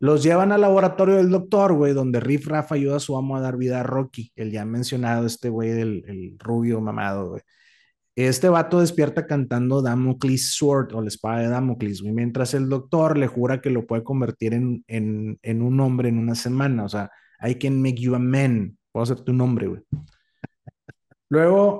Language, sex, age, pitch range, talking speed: Spanish, male, 30-49, 115-150 Hz, 200 wpm